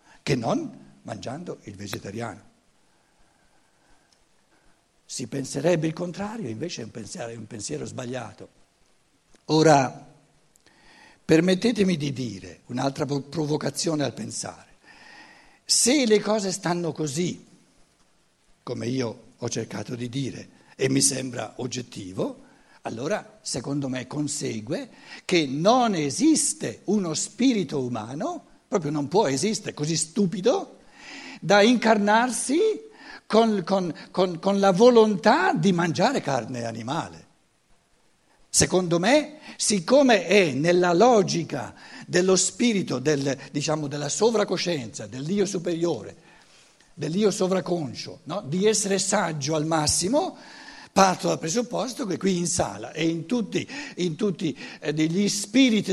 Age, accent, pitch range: 60-79, native, 140-210 Hz